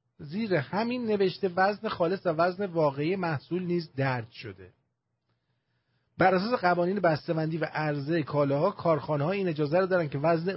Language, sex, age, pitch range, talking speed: English, male, 40-59, 140-180 Hz, 150 wpm